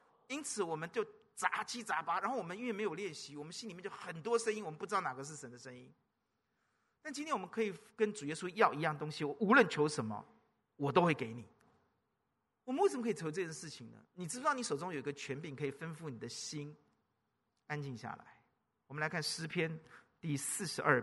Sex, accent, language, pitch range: male, native, Chinese, 150-215 Hz